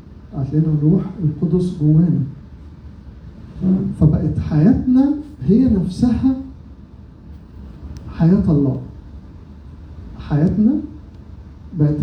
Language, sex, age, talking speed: Arabic, male, 50-69, 60 wpm